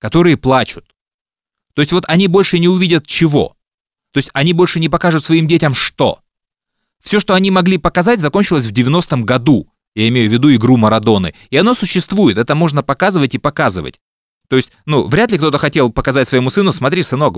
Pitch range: 115-170 Hz